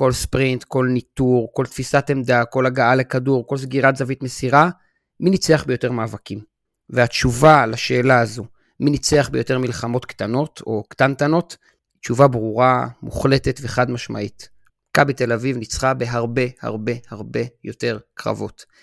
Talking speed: 135 wpm